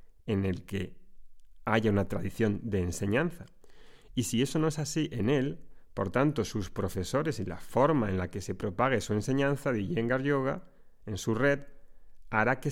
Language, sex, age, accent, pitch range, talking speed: Spanish, male, 30-49, Spanish, 100-130 Hz, 180 wpm